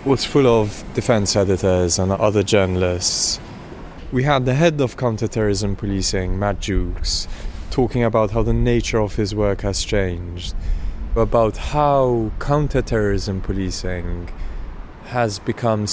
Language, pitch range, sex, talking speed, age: English, 95-115 Hz, male, 125 wpm, 20-39